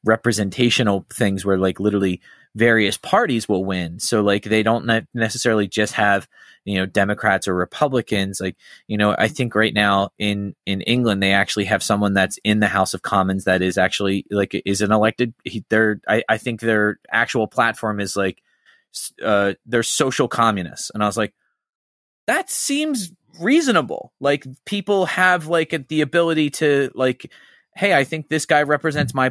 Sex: male